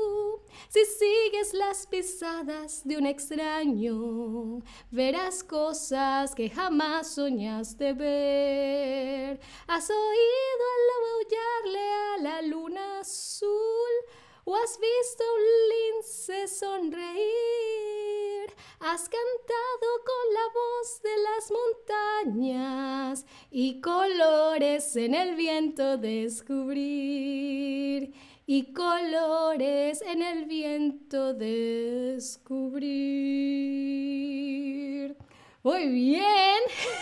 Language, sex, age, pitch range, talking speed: Spanish, female, 20-39, 270-395 Hz, 80 wpm